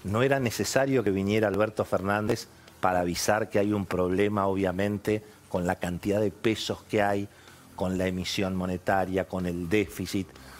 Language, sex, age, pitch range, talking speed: Spanish, male, 50-69, 95-115 Hz, 160 wpm